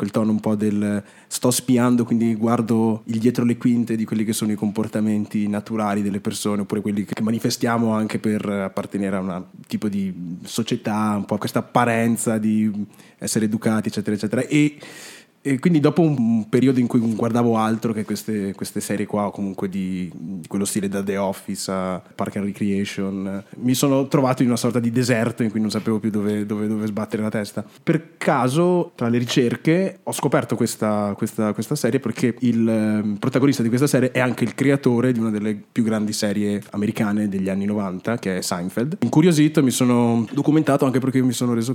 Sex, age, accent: male, 20-39, native